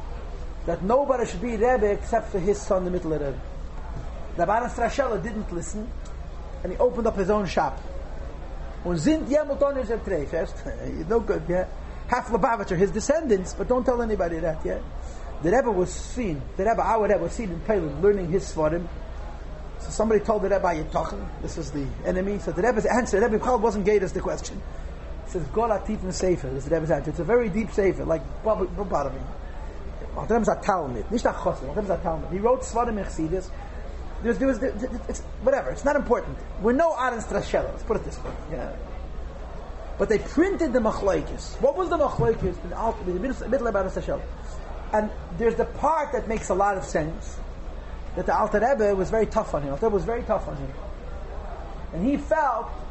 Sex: male